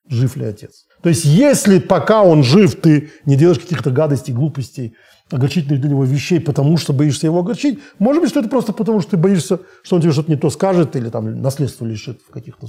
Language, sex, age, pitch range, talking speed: Russian, male, 40-59, 130-180 Hz, 215 wpm